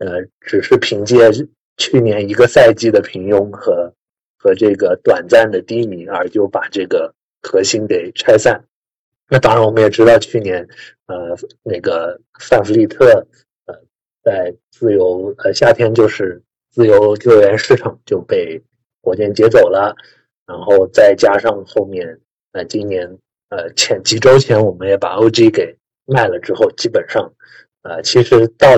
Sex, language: male, Chinese